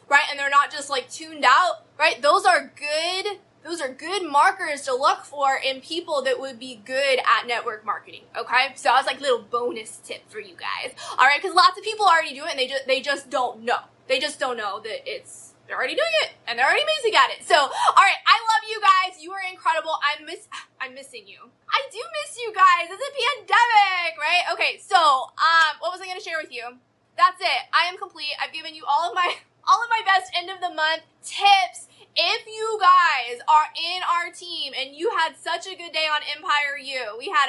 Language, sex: English, female